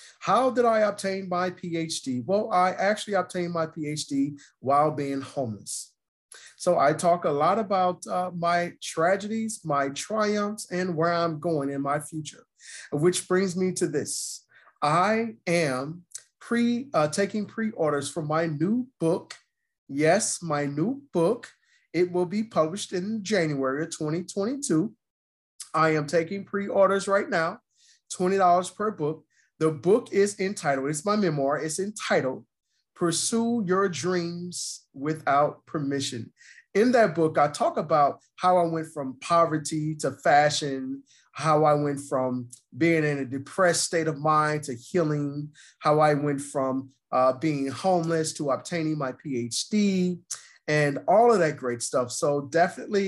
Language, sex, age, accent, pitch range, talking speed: English, male, 30-49, American, 145-185 Hz, 145 wpm